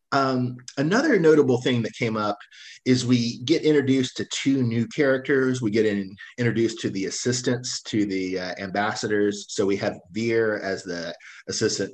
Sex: male